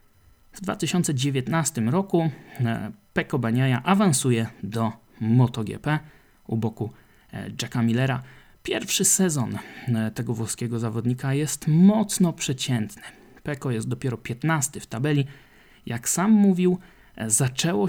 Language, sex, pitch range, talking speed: Polish, male, 115-160 Hz, 100 wpm